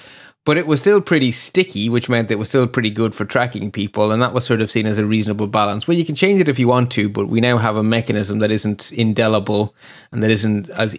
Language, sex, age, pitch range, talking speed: English, male, 30-49, 115-155 Hz, 260 wpm